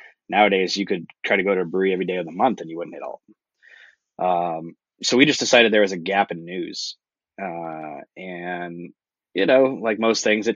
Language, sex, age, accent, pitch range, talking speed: English, male, 20-39, American, 90-115 Hz, 215 wpm